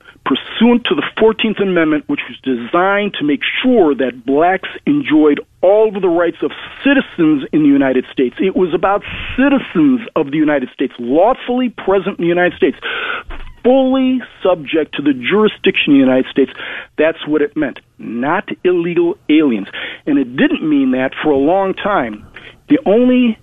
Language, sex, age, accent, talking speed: English, male, 50-69, American, 165 wpm